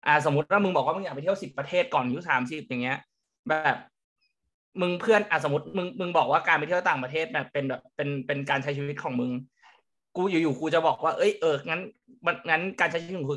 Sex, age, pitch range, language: male, 20-39, 135-175 Hz, Thai